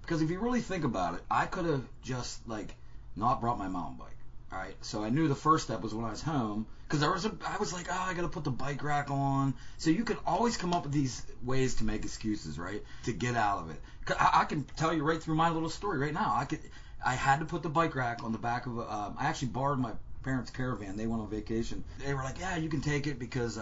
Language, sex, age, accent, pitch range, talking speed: English, male, 30-49, American, 110-140 Hz, 265 wpm